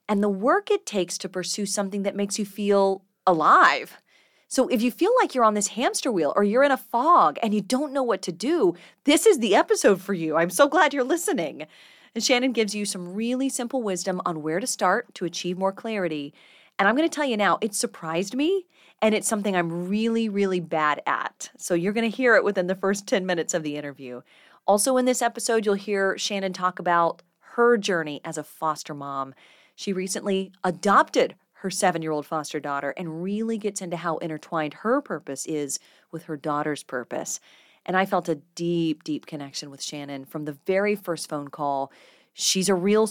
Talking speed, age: 205 wpm, 30-49